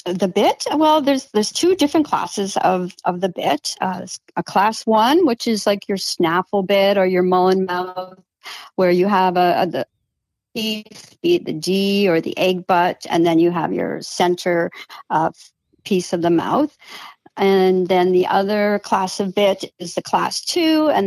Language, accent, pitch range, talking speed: English, American, 180-220 Hz, 175 wpm